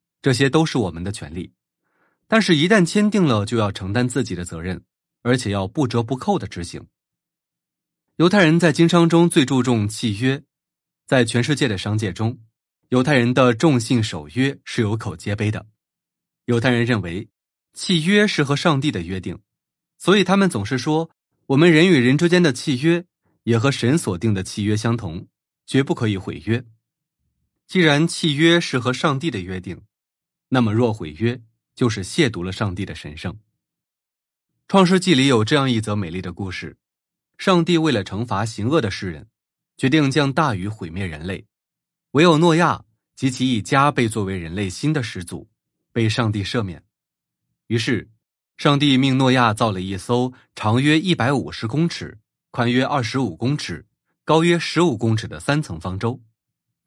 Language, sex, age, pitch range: Chinese, male, 20-39, 105-150 Hz